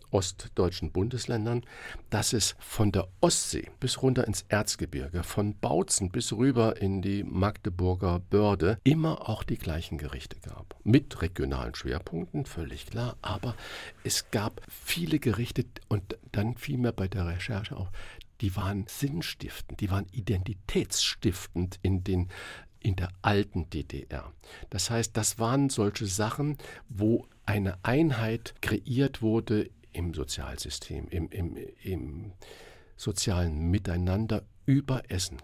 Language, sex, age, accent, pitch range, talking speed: German, male, 50-69, German, 90-115 Hz, 120 wpm